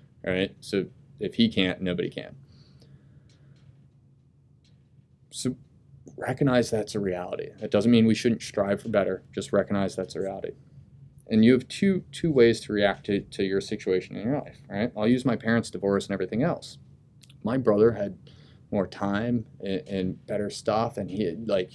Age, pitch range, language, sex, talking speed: 30-49, 105-140 Hz, English, male, 170 wpm